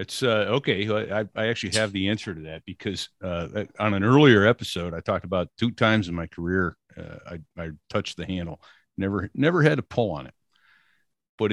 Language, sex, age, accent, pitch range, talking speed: English, male, 50-69, American, 85-105 Hz, 205 wpm